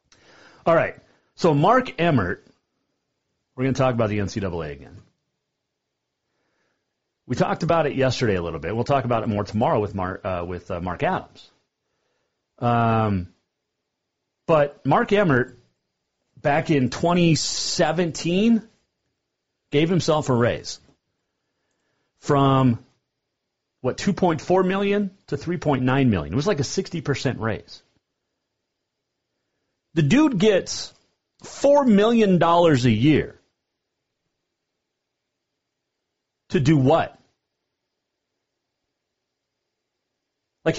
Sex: male